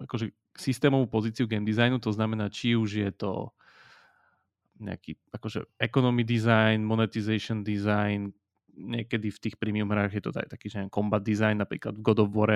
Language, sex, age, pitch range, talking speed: Slovak, male, 30-49, 105-115 Hz, 165 wpm